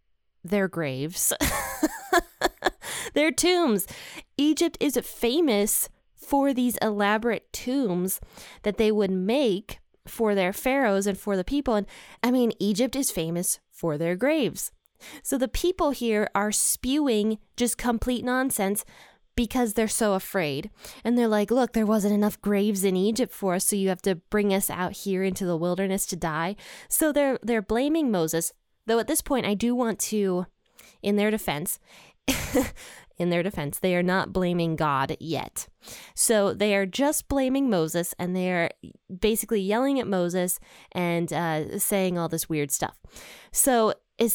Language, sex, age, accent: English, female, 20-39, American